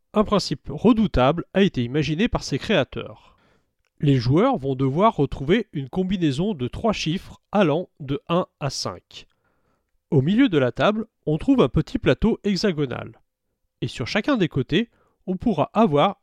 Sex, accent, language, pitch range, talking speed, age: male, French, French, 145-220 Hz, 160 wpm, 30-49